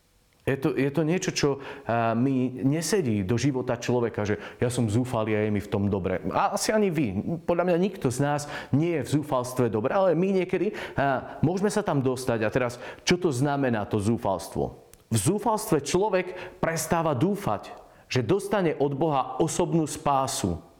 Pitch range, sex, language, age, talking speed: 115-160 Hz, male, Slovak, 40-59, 175 wpm